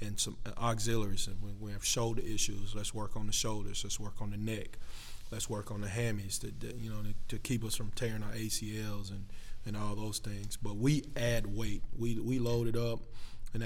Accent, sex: American, male